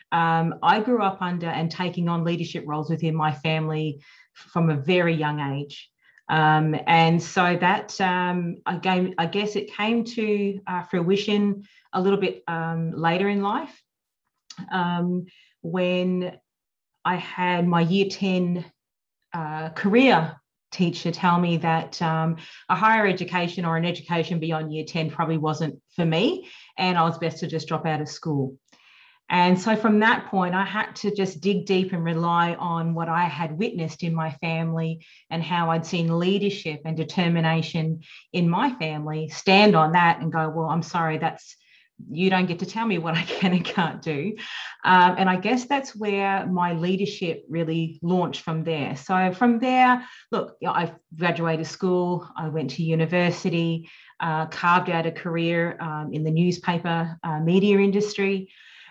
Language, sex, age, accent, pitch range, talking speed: English, female, 30-49, Australian, 165-190 Hz, 165 wpm